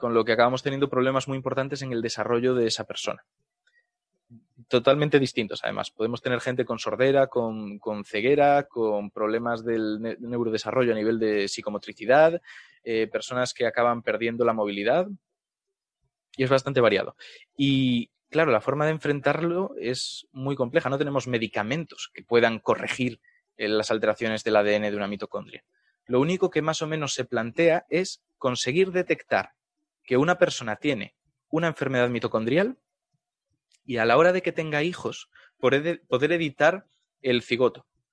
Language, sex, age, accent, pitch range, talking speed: Spanish, male, 20-39, Spanish, 115-150 Hz, 155 wpm